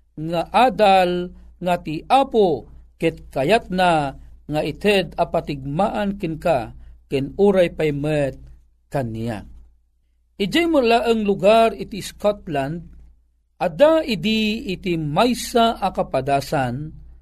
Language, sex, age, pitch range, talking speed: Filipino, male, 40-59, 140-205 Hz, 85 wpm